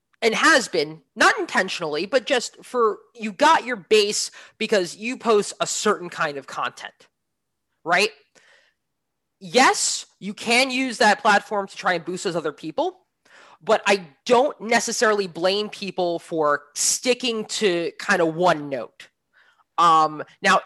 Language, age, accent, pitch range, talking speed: English, 20-39, American, 175-240 Hz, 140 wpm